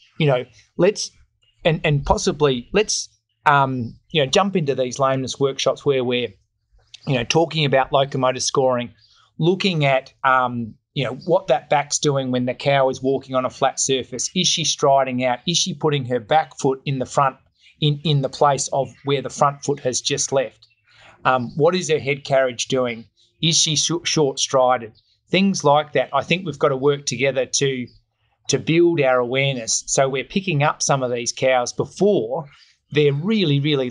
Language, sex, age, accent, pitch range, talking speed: English, male, 30-49, Australian, 125-150 Hz, 190 wpm